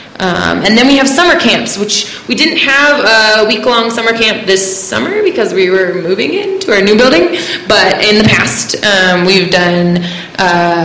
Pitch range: 170-215 Hz